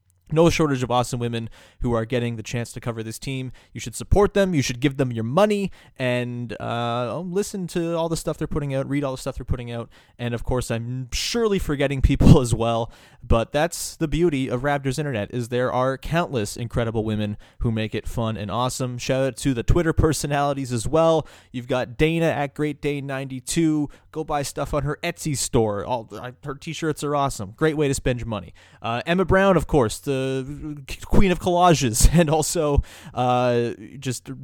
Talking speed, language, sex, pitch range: 200 wpm, English, male, 115-150 Hz